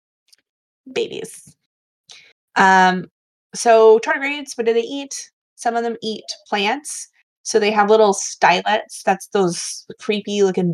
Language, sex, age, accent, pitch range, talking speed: English, female, 20-39, American, 180-230 Hz, 125 wpm